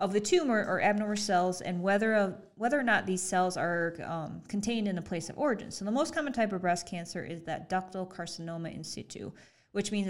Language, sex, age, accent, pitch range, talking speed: English, female, 20-39, American, 175-220 Hz, 225 wpm